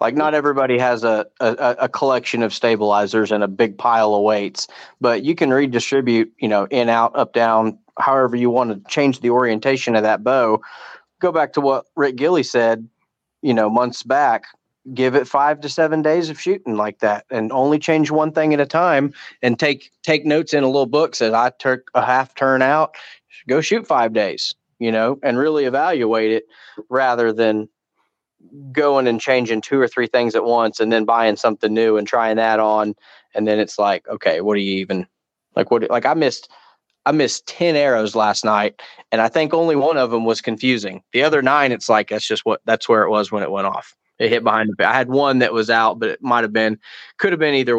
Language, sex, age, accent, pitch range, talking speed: English, male, 30-49, American, 110-140 Hz, 215 wpm